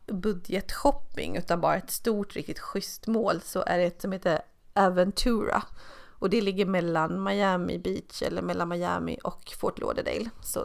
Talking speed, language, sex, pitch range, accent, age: 165 wpm, Swedish, female, 175-205 Hz, native, 30-49